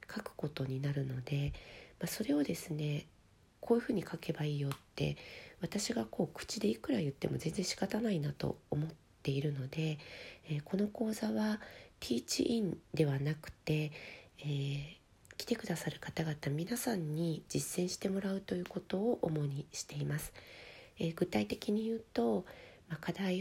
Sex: female